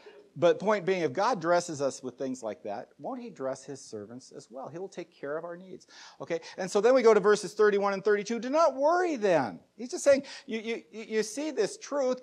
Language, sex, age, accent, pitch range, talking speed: English, male, 50-69, American, 155-225 Hz, 235 wpm